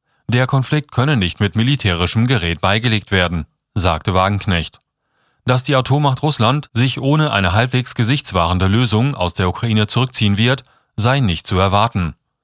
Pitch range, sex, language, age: 100-130 Hz, male, German, 30-49